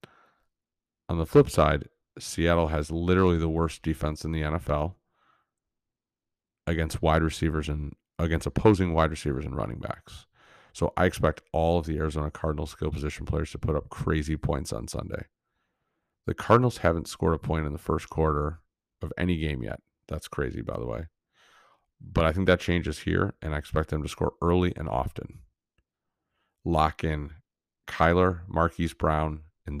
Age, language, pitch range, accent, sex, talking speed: 30-49, English, 75-90 Hz, American, male, 165 wpm